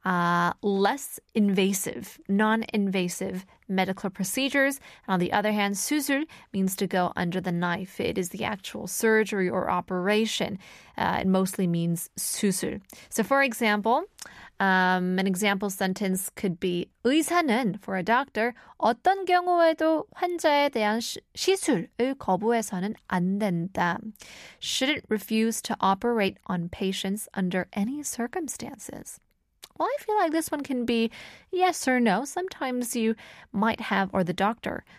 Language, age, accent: Korean, 20-39, American